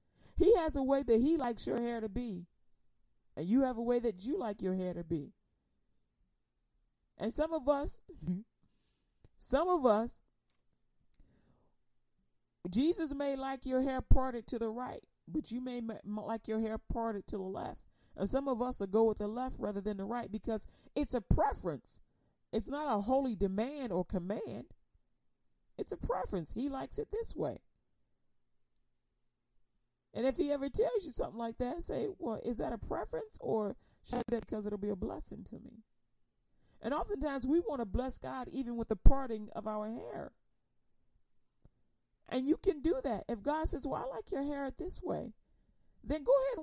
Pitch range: 220-290 Hz